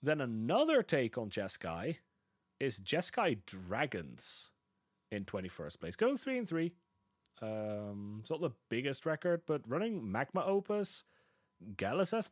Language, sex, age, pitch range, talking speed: English, male, 30-49, 105-165 Hz, 125 wpm